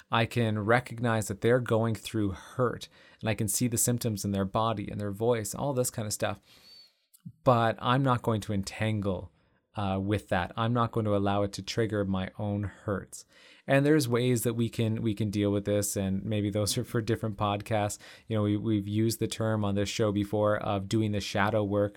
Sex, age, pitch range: male, 30-49, 100-115 Hz